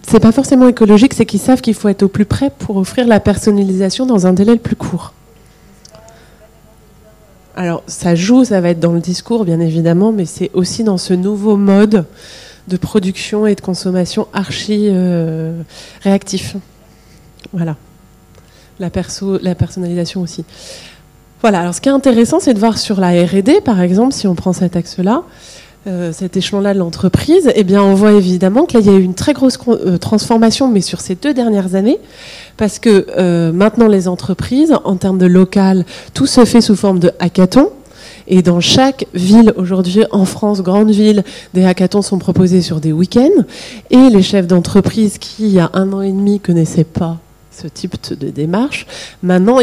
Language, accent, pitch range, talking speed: French, French, 180-215 Hz, 180 wpm